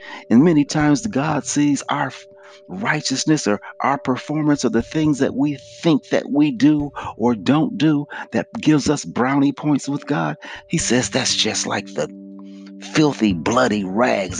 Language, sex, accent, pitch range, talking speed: English, male, American, 105-150 Hz, 160 wpm